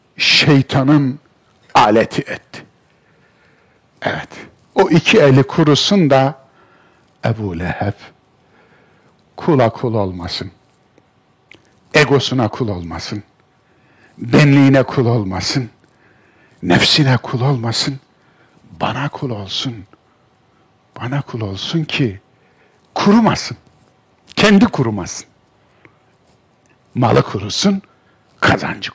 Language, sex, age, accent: Turkish, male, 60-79, native